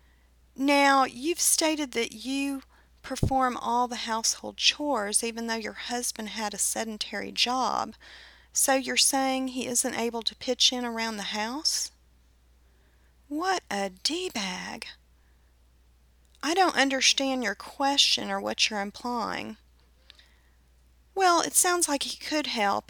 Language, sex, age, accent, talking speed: English, female, 40-59, American, 130 wpm